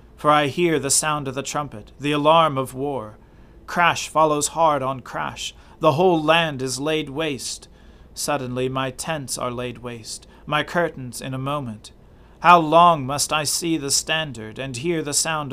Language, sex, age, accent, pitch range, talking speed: English, male, 40-59, American, 120-150 Hz, 175 wpm